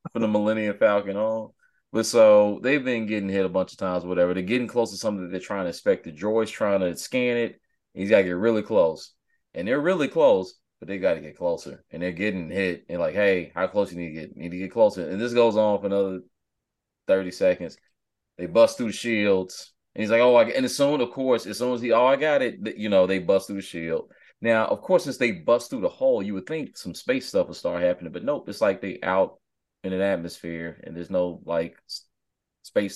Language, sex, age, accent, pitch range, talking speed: English, male, 30-49, American, 90-120 Hz, 250 wpm